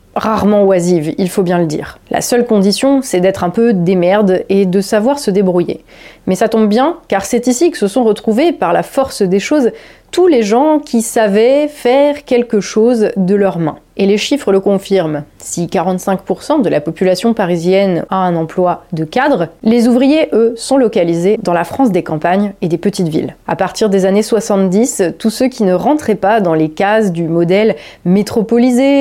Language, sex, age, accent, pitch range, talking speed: French, female, 30-49, French, 180-235 Hz, 195 wpm